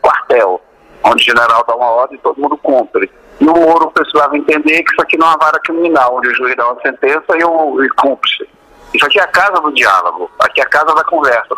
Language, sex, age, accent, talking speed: Portuguese, male, 60-79, Brazilian, 245 wpm